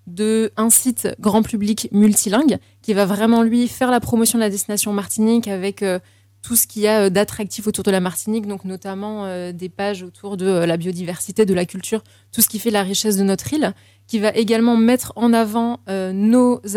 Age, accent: 20-39, French